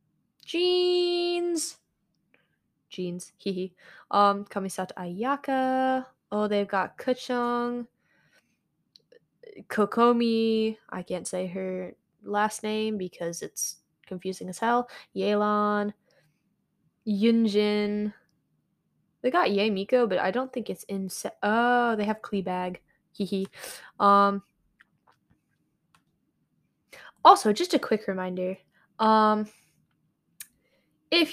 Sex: female